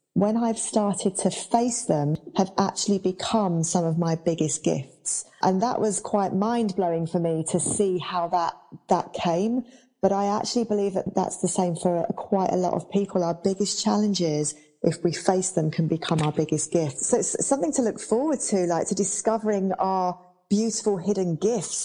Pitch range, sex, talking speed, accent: 165-195 Hz, female, 185 wpm, British